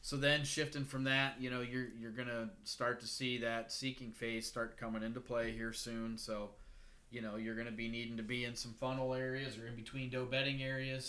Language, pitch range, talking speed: English, 110-125 Hz, 235 wpm